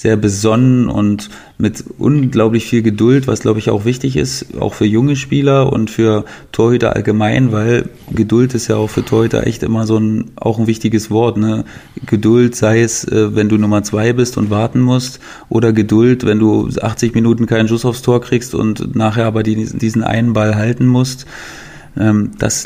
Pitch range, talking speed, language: 105-120 Hz, 180 wpm, German